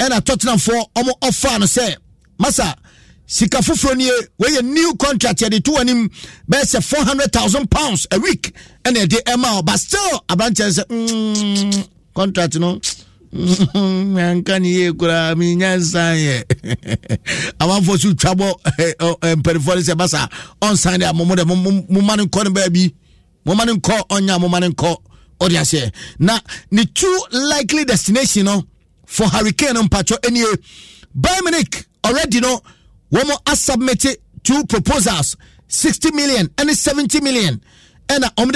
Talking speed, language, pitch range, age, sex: 140 wpm, English, 180-265 Hz, 50-69, male